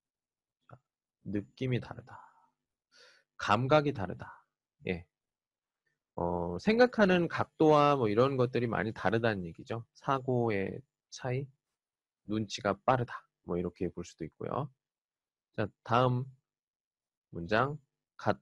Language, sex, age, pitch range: Chinese, male, 20-39, 100-145 Hz